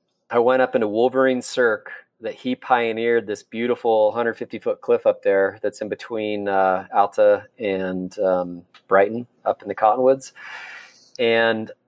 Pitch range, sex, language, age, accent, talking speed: 105-135 Hz, male, English, 30-49, American, 140 wpm